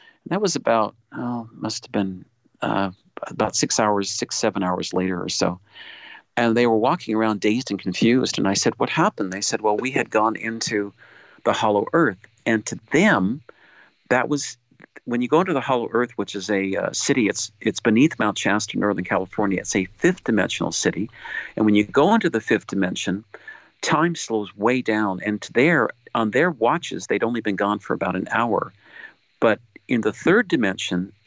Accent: American